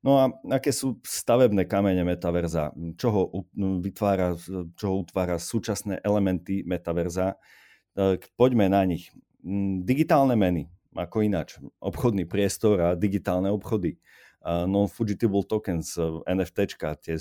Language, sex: Slovak, male